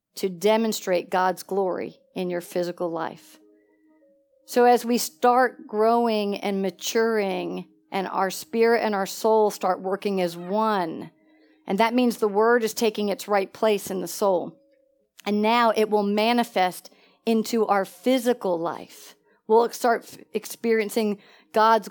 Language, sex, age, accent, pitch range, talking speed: English, female, 50-69, American, 210-250 Hz, 140 wpm